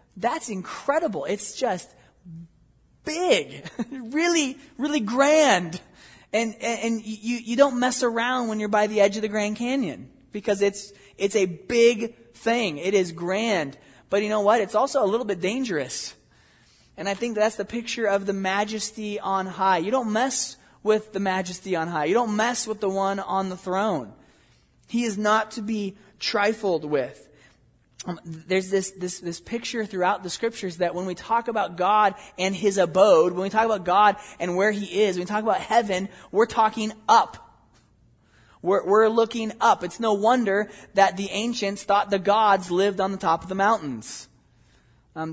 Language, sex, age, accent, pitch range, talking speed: English, male, 20-39, American, 190-225 Hz, 180 wpm